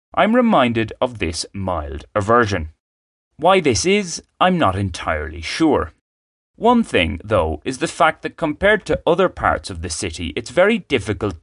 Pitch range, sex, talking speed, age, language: 85-130 Hz, male, 160 wpm, 30-49, English